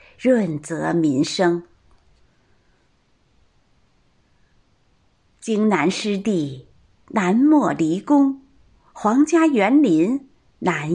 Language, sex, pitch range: Chinese, female, 175-280 Hz